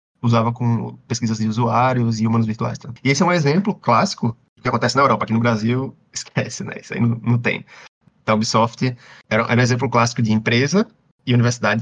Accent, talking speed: Brazilian, 205 wpm